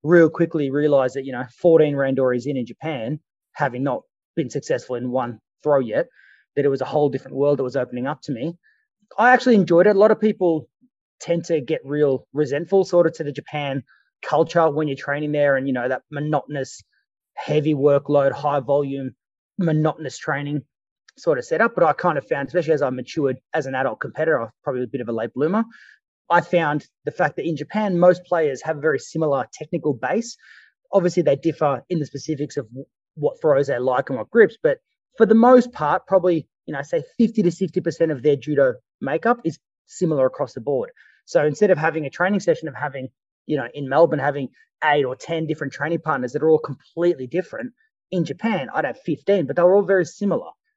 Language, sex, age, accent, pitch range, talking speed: English, male, 20-39, Australian, 140-180 Hz, 205 wpm